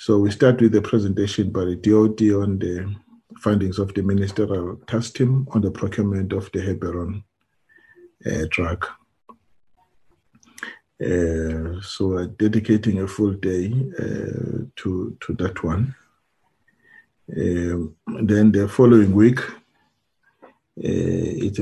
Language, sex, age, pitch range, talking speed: English, male, 50-69, 95-110 Hz, 120 wpm